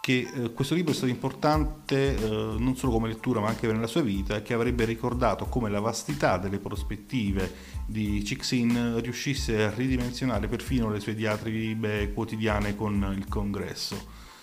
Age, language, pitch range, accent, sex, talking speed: 30-49, Italian, 100-125 Hz, native, male, 160 wpm